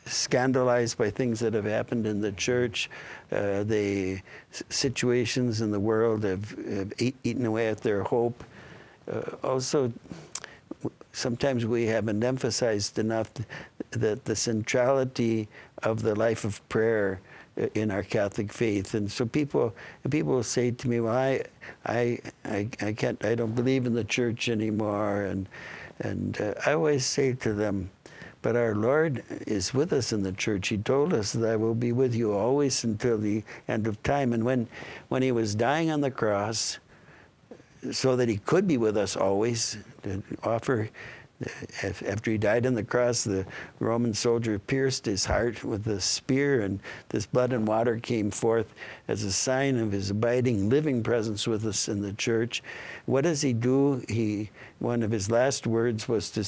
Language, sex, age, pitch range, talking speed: English, male, 60-79, 105-125 Hz, 175 wpm